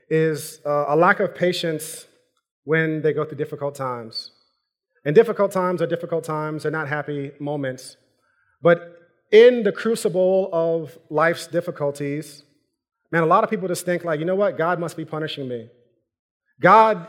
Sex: male